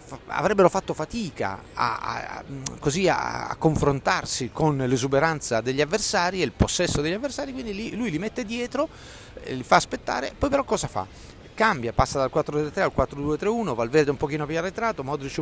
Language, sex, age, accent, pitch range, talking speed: Italian, male, 40-59, native, 120-160 Hz, 165 wpm